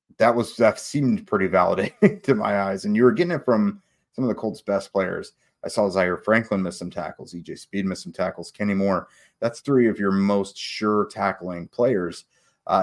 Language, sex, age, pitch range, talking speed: English, male, 30-49, 90-105 Hz, 205 wpm